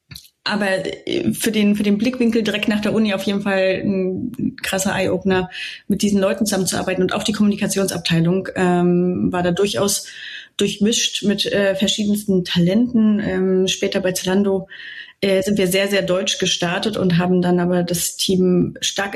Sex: female